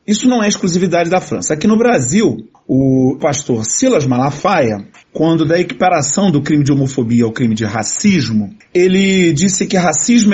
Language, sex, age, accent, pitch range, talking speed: Portuguese, male, 40-59, Brazilian, 130-185 Hz, 165 wpm